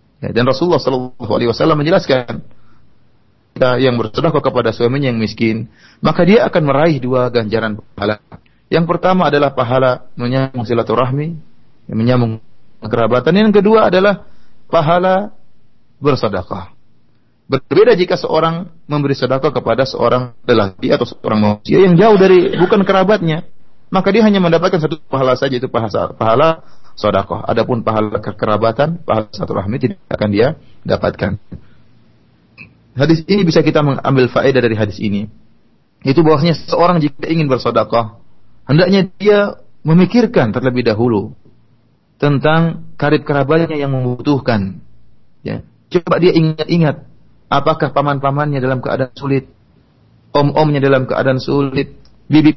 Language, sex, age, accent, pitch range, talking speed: Indonesian, male, 30-49, native, 120-165 Hz, 120 wpm